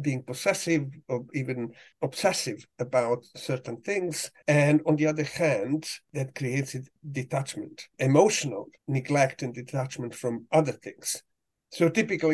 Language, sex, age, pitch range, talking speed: English, male, 50-69, 125-155 Hz, 125 wpm